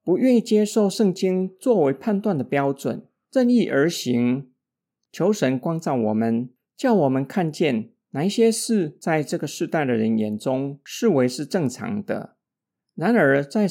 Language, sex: Chinese, male